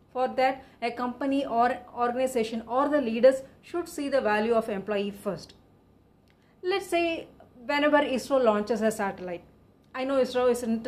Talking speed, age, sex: 150 wpm, 30-49, female